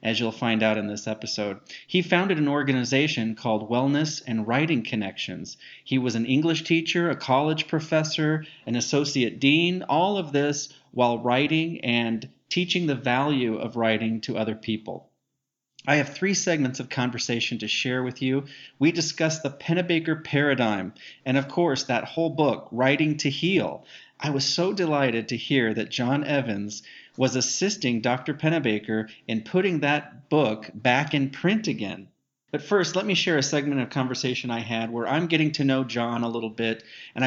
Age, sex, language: 40-59, male, English